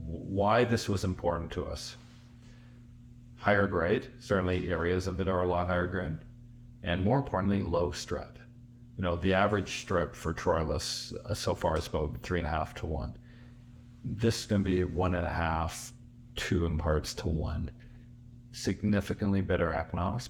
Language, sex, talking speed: English, male, 165 wpm